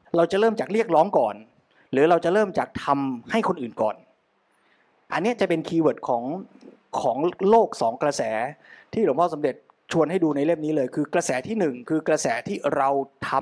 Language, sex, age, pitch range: Thai, male, 30-49, 145-205 Hz